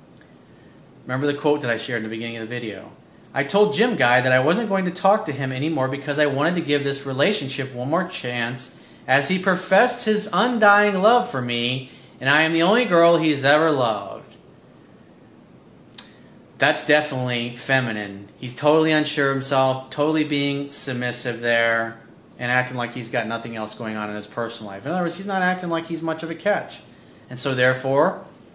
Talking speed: 195 wpm